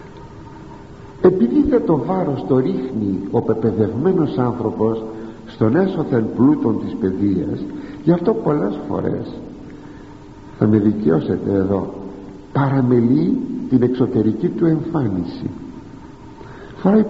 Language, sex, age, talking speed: Greek, male, 60-79, 100 wpm